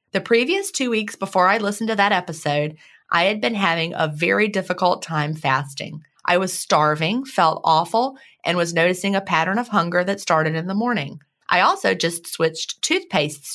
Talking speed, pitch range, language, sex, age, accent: 180 wpm, 160-215 Hz, English, female, 30-49, American